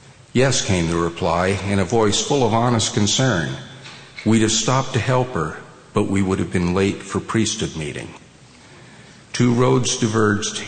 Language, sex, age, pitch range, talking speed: English, male, 50-69, 100-120 Hz, 165 wpm